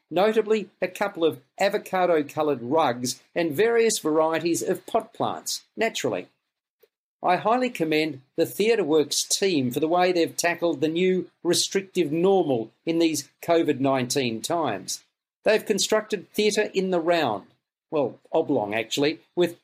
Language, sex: English, male